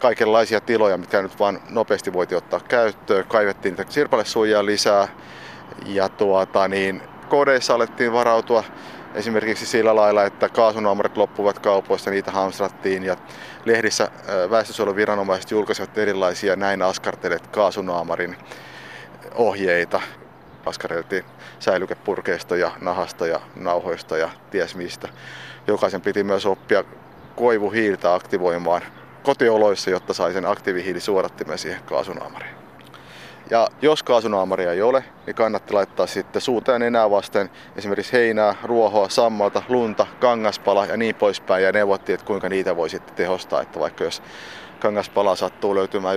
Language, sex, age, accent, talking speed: Finnish, male, 30-49, native, 120 wpm